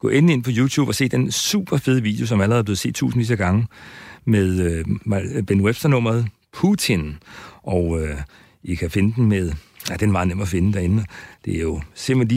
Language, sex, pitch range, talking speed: Danish, male, 100-125 Hz, 195 wpm